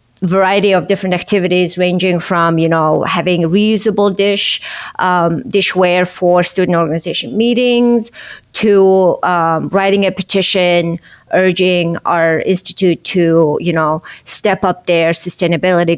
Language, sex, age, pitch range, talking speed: English, female, 30-49, 160-190 Hz, 125 wpm